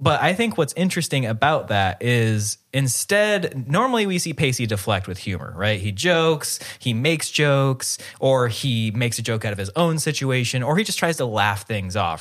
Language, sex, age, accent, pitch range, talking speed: English, male, 20-39, American, 100-140 Hz, 195 wpm